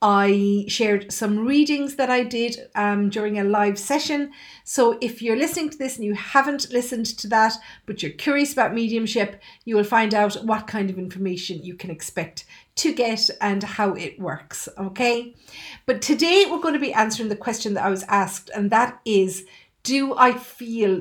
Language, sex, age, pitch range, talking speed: English, female, 50-69, 195-245 Hz, 185 wpm